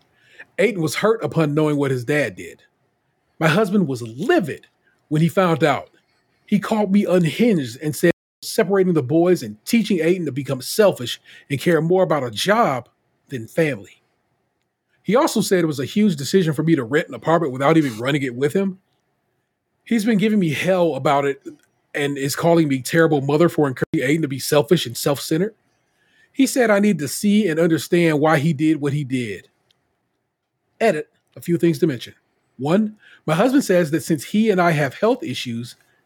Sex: male